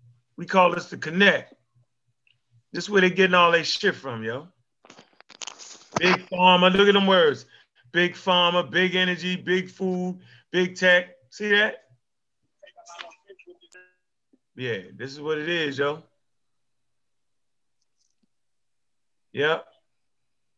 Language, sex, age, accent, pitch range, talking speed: English, male, 30-49, American, 145-215 Hz, 115 wpm